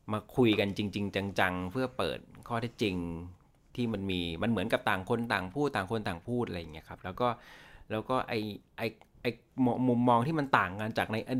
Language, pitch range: Thai, 95-125 Hz